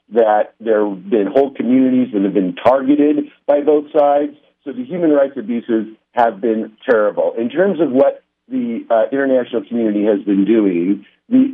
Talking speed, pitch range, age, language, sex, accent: 170 wpm, 110-145 Hz, 50-69, English, male, American